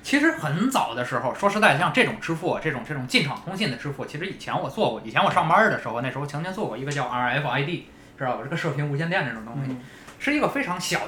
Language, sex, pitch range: Chinese, male, 135-180 Hz